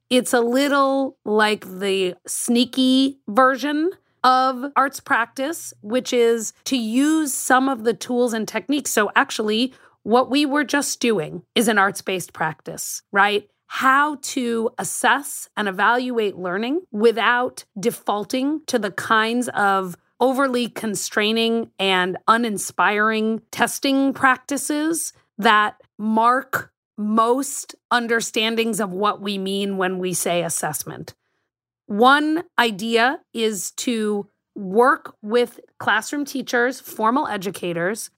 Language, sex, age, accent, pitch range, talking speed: English, female, 30-49, American, 205-260 Hz, 115 wpm